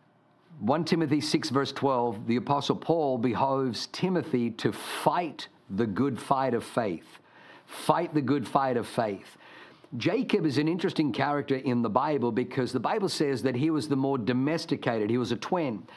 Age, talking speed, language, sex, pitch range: 50-69, 170 wpm, English, male, 120-150 Hz